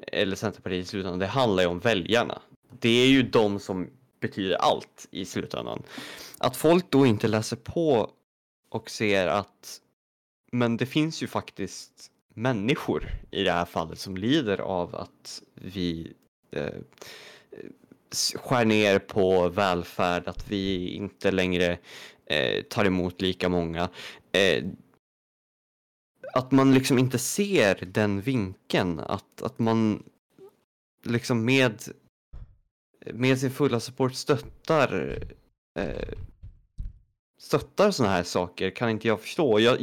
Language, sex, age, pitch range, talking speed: Swedish, male, 20-39, 95-125 Hz, 120 wpm